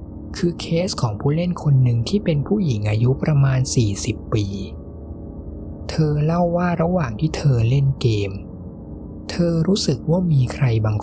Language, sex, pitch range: Thai, male, 100-155 Hz